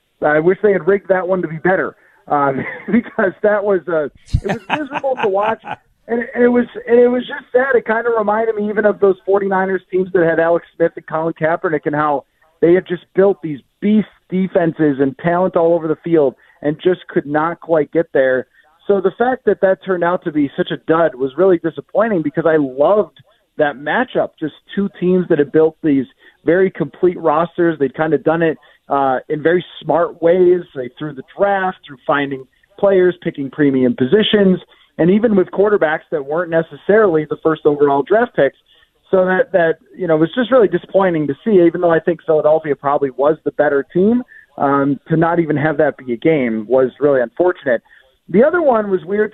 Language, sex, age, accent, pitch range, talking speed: English, male, 40-59, American, 150-195 Hz, 205 wpm